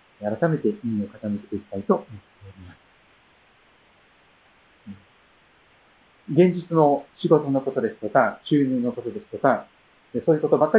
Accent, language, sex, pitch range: native, Japanese, male, 115-175 Hz